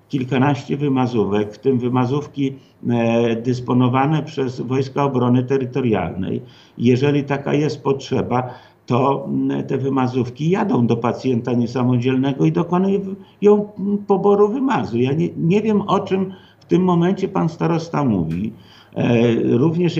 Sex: male